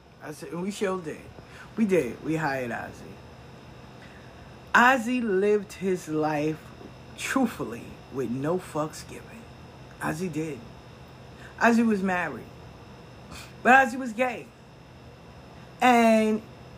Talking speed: 100 wpm